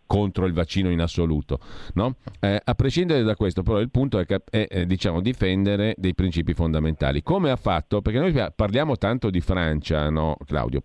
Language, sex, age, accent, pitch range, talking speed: Italian, male, 40-59, native, 85-115 Hz, 185 wpm